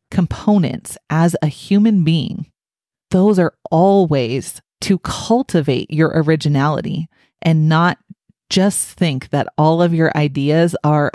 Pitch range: 150-185 Hz